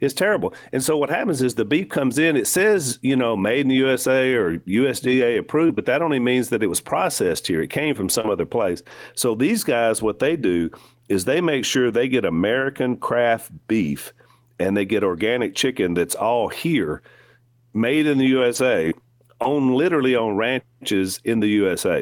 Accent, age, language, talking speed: American, 40-59, English, 195 wpm